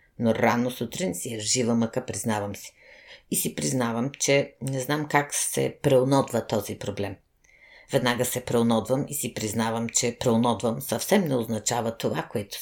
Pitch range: 110-135 Hz